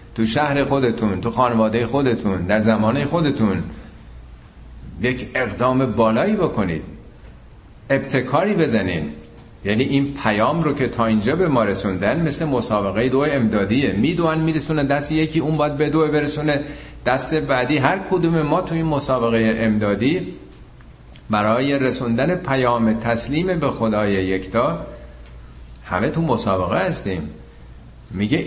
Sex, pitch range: male, 90-130 Hz